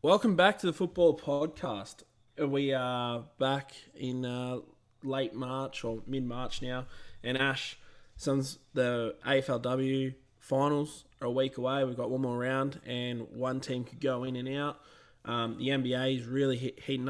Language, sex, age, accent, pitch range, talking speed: English, male, 20-39, Australian, 120-140 Hz, 160 wpm